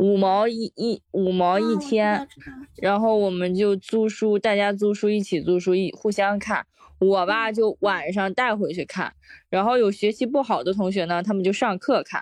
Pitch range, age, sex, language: 205-315 Hz, 20-39, female, Chinese